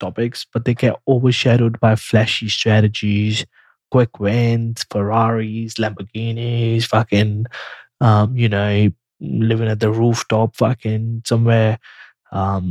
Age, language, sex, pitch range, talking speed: 20-39, English, male, 115-155 Hz, 110 wpm